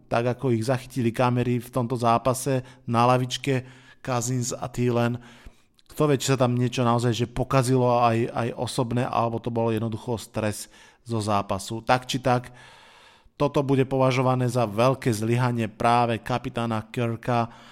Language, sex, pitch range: Slovak, male, 120-135 Hz